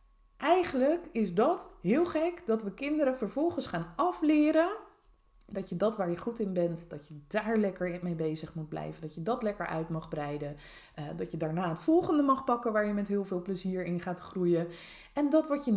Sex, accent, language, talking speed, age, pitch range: female, Dutch, Dutch, 210 wpm, 20-39, 160-235 Hz